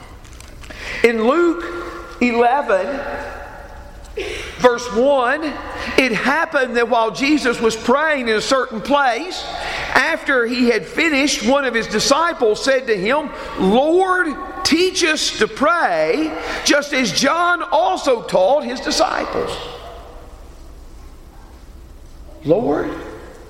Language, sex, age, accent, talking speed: English, male, 50-69, American, 100 wpm